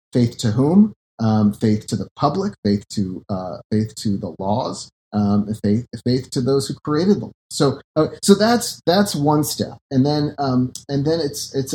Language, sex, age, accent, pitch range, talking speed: English, male, 40-59, American, 115-150 Hz, 190 wpm